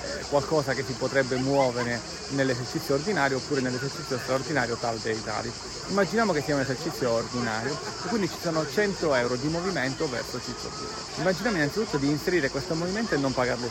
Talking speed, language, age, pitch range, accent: 175 wpm, Italian, 40-59, 125-165 Hz, native